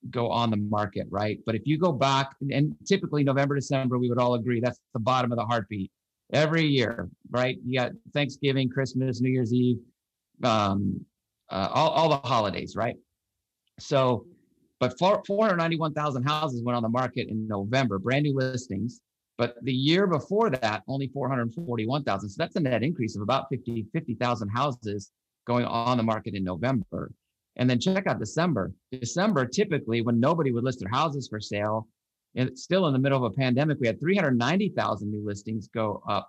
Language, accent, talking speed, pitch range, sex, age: English, American, 190 wpm, 115-145 Hz, male, 50-69